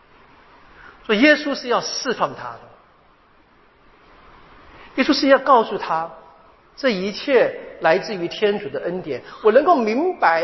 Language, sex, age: Chinese, male, 50-69